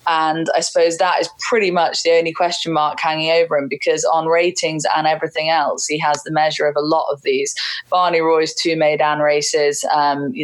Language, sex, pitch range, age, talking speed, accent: English, female, 150-175 Hz, 20-39, 205 wpm, British